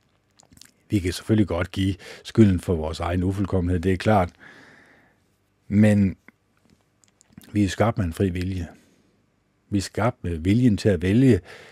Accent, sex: native, male